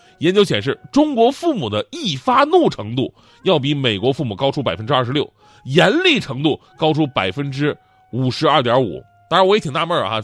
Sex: male